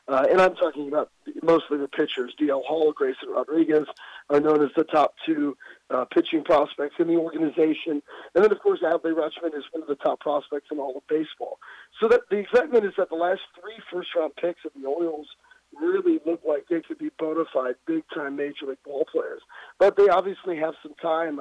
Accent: American